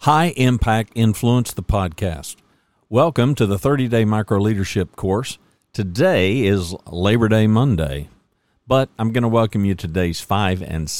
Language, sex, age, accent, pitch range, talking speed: English, male, 50-69, American, 90-115 Hz, 145 wpm